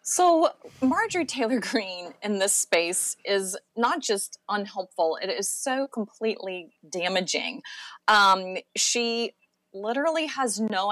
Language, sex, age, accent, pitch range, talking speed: English, female, 30-49, American, 190-230 Hz, 115 wpm